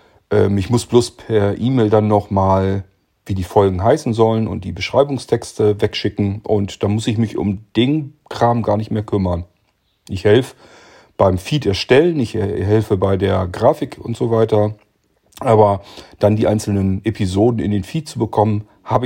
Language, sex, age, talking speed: German, male, 40-59, 165 wpm